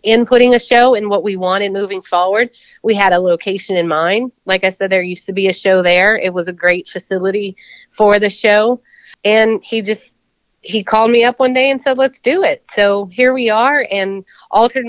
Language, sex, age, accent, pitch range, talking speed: English, female, 30-49, American, 190-235 Hz, 220 wpm